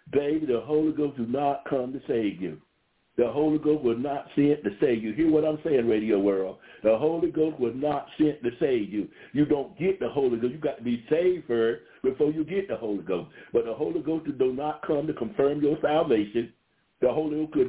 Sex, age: male, 60-79